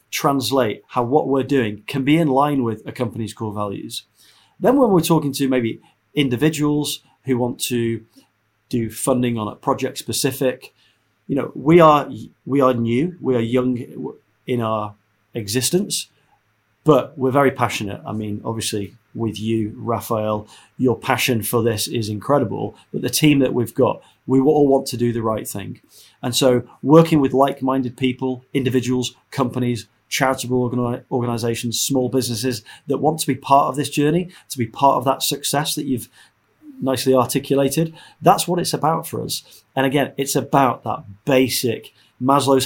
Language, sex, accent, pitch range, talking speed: English, male, British, 110-140 Hz, 165 wpm